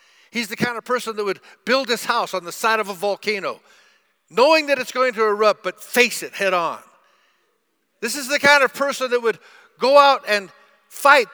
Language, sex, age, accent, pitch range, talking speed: English, male, 50-69, American, 190-275 Hz, 205 wpm